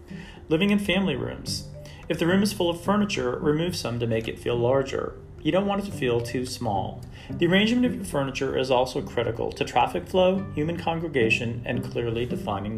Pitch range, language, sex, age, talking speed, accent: 110-155 Hz, English, male, 40-59, 195 wpm, American